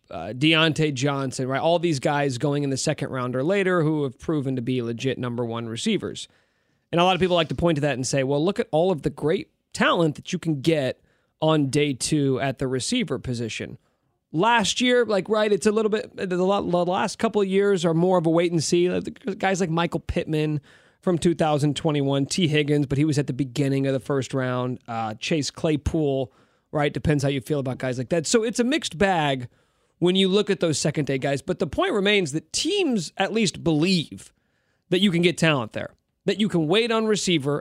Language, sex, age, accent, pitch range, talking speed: English, male, 30-49, American, 135-185 Hz, 220 wpm